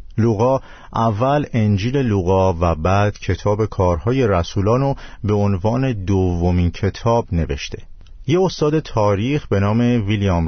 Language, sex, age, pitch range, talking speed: Persian, male, 50-69, 90-115 Hz, 115 wpm